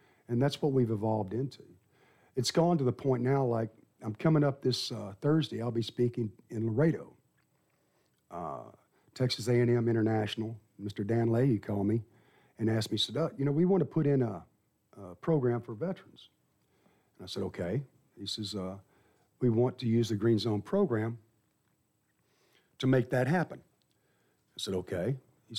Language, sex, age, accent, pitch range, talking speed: English, male, 50-69, American, 115-135 Hz, 175 wpm